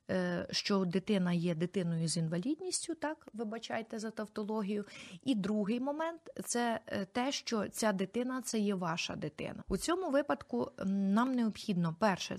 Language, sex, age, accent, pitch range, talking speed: Ukrainian, female, 30-49, native, 185-235 Hz, 135 wpm